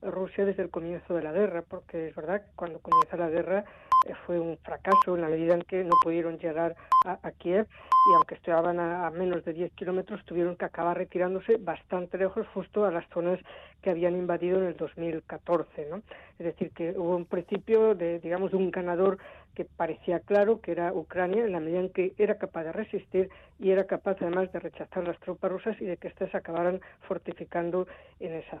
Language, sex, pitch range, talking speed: Spanish, female, 170-195 Hz, 205 wpm